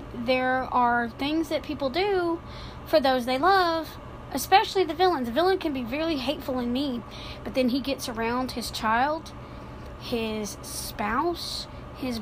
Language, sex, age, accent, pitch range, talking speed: English, female, 30-49, American, 255-320 Hz, 150 wpm